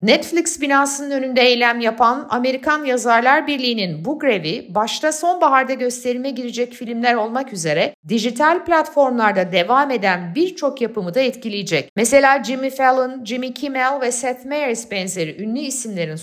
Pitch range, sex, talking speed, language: 195-265 Hz, female, 135 wpm, Turkish